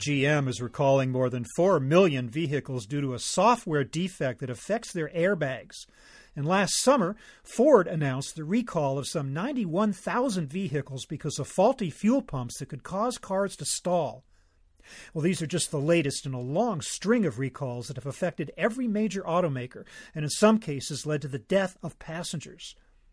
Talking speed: 175 wpm